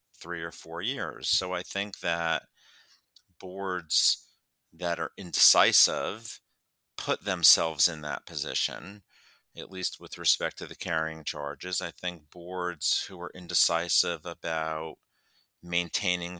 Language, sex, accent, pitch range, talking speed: English, male, American, 80-90 Hz, 120 wpm